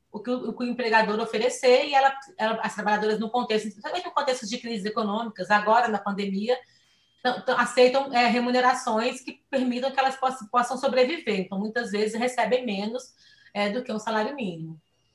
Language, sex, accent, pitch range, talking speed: Portuguese, female, Brazilian, 210-250 Hz, 175 wpm